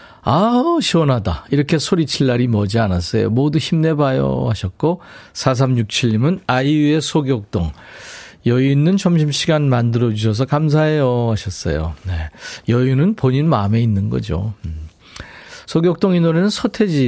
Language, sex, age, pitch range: Korean, male, 40-59, 110-160 Hz